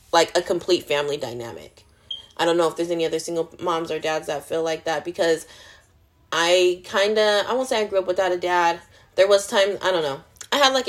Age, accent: 20-39, American